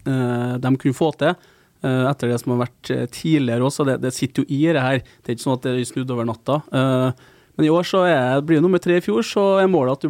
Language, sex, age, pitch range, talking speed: English, male, 20-39, 125-150 Hz, 295 wpm